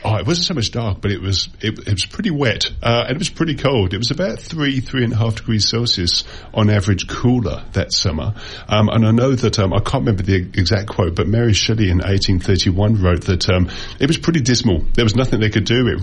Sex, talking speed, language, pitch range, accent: male, 245 wpm, English, 95-115 Hz, British